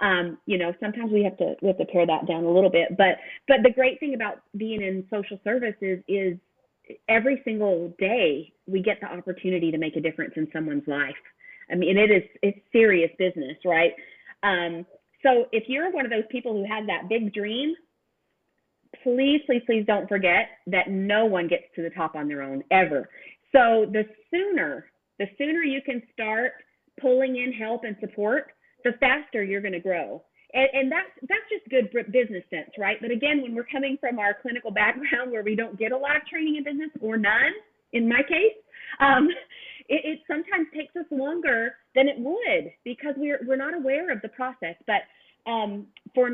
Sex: female